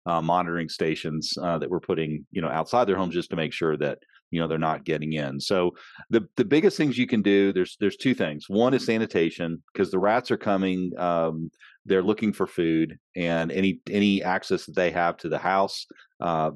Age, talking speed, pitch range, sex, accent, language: 40-59, 215 wpm, 85-100 Hz, male, American, English